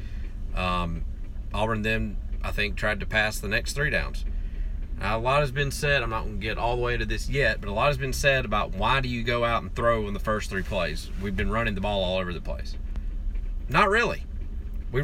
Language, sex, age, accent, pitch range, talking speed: English, male, 30-49, American, 75-125 Hz, 240 wpm